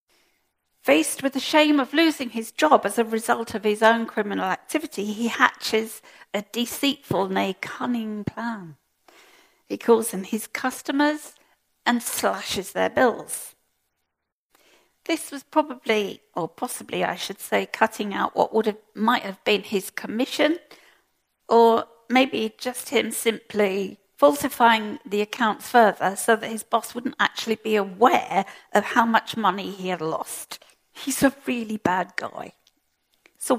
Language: English